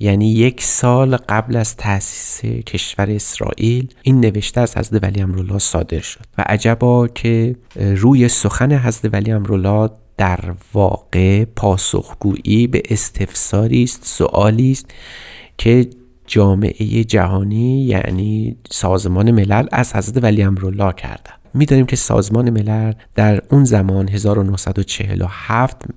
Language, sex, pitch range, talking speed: Persian, male, 100-120 Hz, 120 wpm